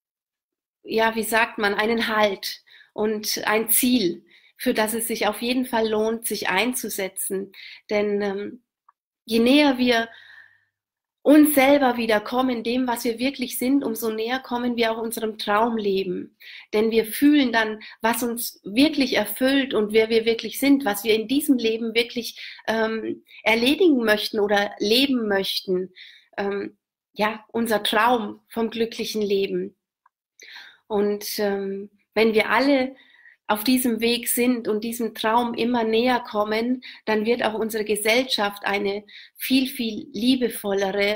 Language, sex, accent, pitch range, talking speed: English, female, German, 205-235 Hz, 140 wpm